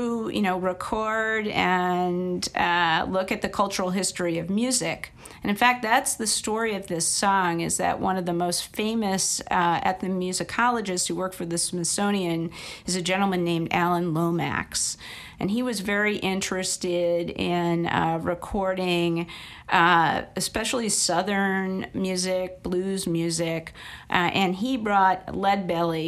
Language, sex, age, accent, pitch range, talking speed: English, female, 50-69, American, 170-195 Hz, 140 wpm